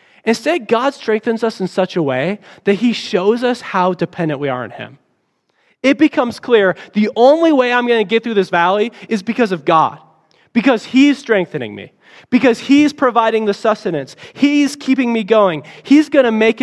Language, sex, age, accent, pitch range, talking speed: English, male, 20-39, American, 145-225 Hz, 190 wpm